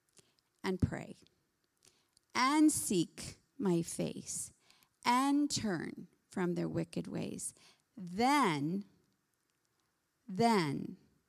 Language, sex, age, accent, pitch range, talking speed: English, female, 50-69, American, 175-240 Hz, 75 wpm